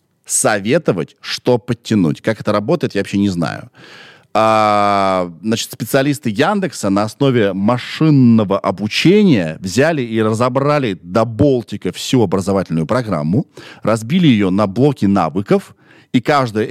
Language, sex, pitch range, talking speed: Russian, male, 105-155 Hz, 115 wpm